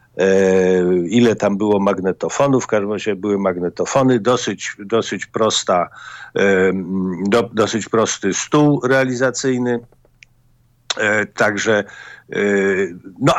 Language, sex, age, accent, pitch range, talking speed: Polish, male, 50-69, native, 95-125 Hz, 70 wpm